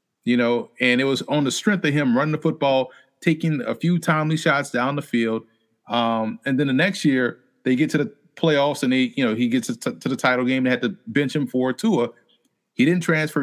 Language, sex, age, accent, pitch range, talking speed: English, male, 30-49, American, 130-175 Hz, 230 wpm